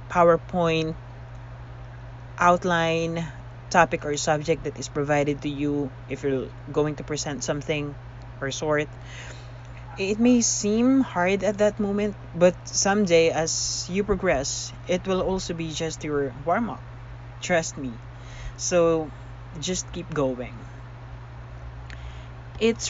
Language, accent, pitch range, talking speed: English, Filipino, 120-175 Hz, 115 wpm